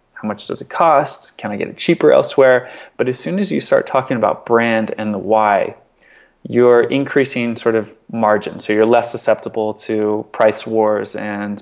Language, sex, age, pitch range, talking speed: English, male, 20-39, 110-120 Hz, 185 wpm